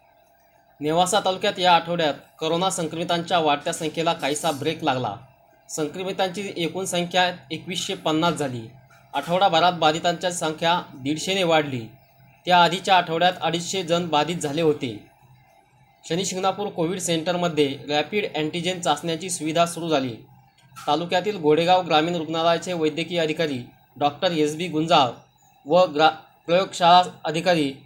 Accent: native